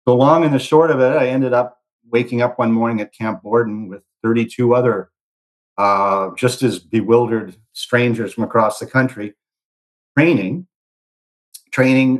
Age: 50-69